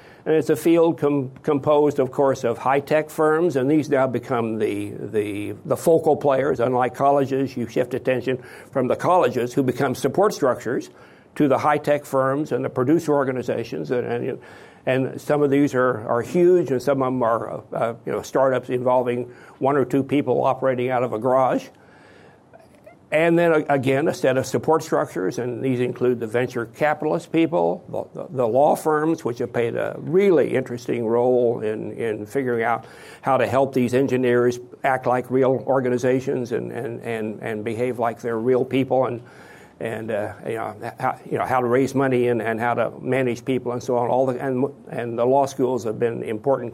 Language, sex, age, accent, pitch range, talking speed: English, male, 60-79, American, 120-140 Hz, 190 wpm